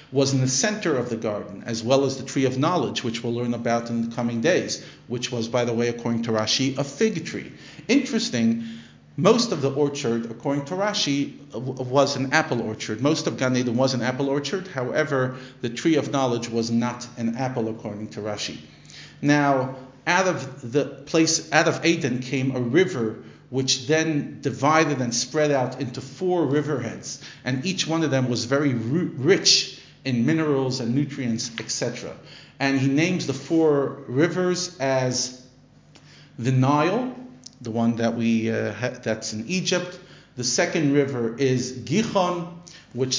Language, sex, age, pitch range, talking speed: English, male, 50-69, 120-150 Hz, 170 wpm